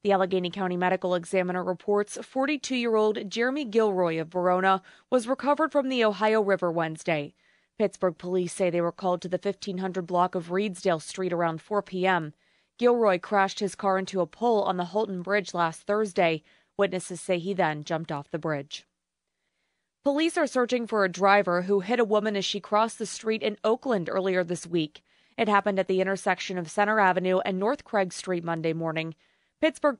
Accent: American